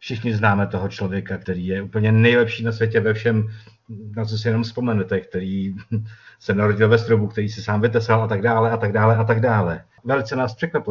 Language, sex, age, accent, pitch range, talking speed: Czech, male, 50-69, native, 95-115 Hz, 210 wpm